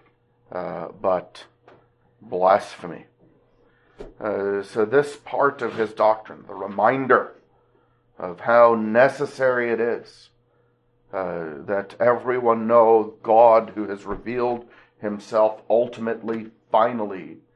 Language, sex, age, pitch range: English, male, 40-59, 100-125 Hz